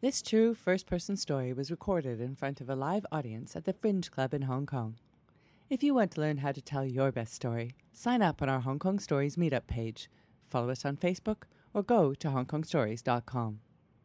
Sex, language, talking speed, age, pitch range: female, English, 205 wpm, 30-49, 120-175 Hz